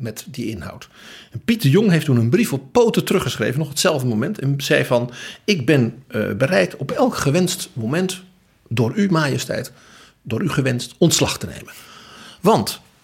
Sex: male